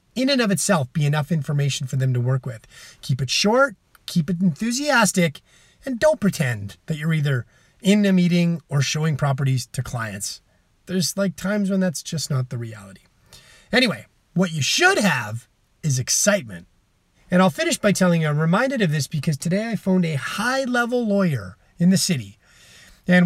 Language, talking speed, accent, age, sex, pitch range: English, 180 wpm, American, 30-49, male, 140-205 Hz